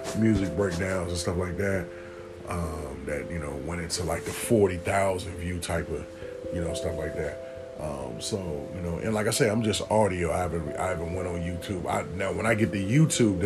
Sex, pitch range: male, 85-110 Hz